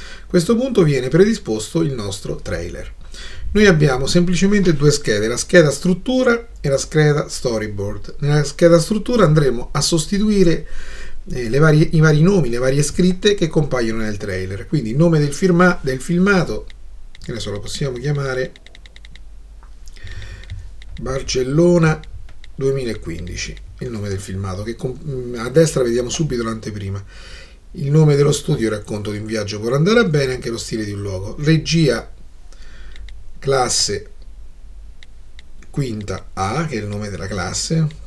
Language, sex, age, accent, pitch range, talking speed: Italian, male, 40-59, native, 100-160 Hz, 145 wpm